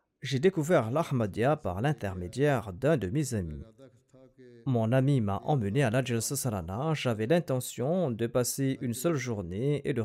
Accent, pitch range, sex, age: French, 115-140 Hz, male, 40-59